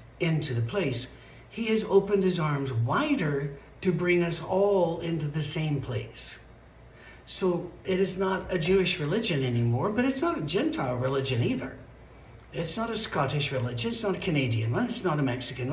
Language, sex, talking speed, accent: English, male, 175 wpm, American